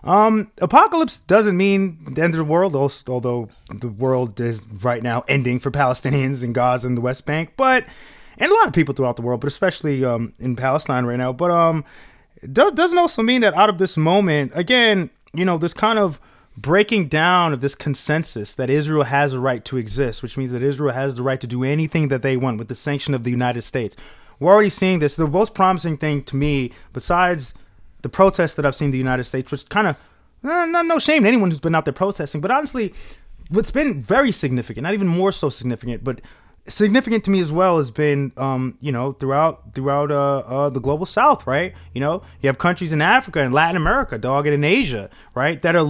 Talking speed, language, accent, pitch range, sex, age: 220 wpm, English, American, 130-190 Hz, male, 20-39